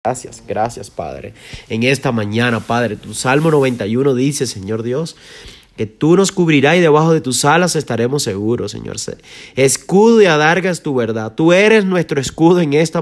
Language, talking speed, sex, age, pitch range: Spanish, 165 wpm, male, 30-49, 130-170 Hz